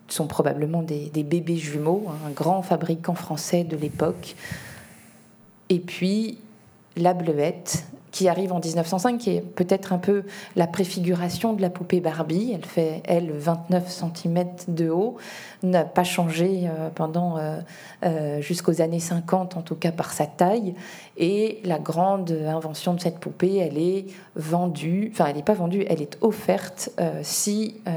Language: French